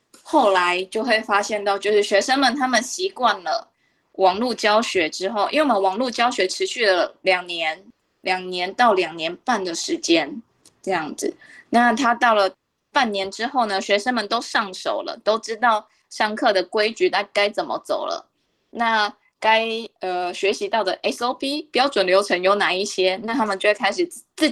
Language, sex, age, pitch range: Chinese, female, 20-39, 190-245 Hz